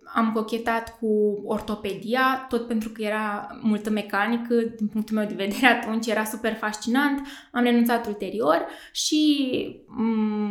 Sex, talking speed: female, 135 wpm